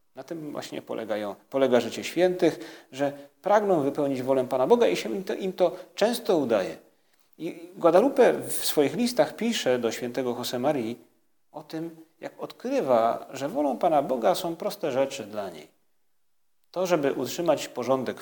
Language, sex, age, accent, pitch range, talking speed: Polish, male, 40-59, native, 120-180 Hz, 160 wpm